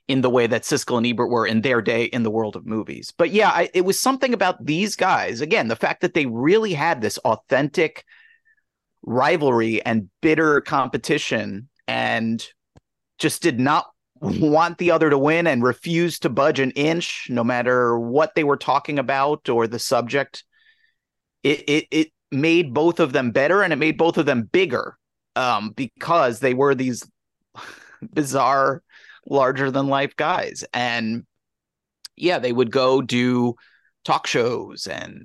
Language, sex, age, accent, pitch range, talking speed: English, male, 30-49, American, 125-185 Hz, 165 wpm